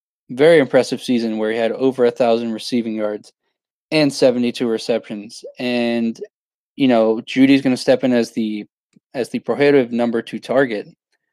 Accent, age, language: American, 20-39, English